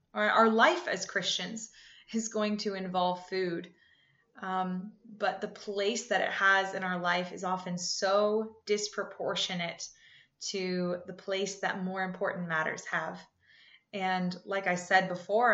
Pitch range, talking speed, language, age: 180-215 Hz, 140 wpm, English, 20-39